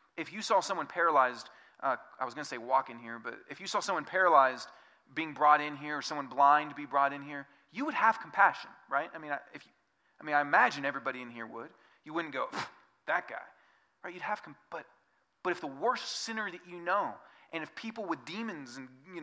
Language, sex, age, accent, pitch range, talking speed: English, male, 30-49, American, 135-170 Hz, 230 wpm